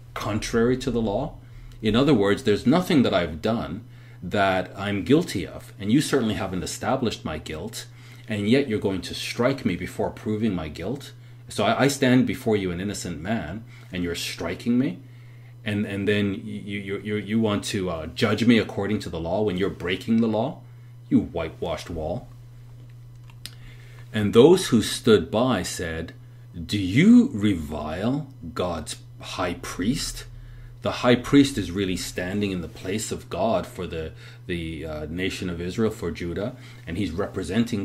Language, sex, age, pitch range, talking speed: English, male, 40-59, 100-120 Hz, 165 wpm